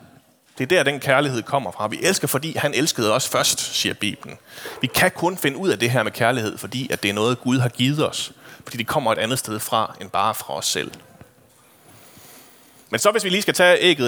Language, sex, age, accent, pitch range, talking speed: Danish, male, 30-49, native, 120-155 Hz, 230 wpm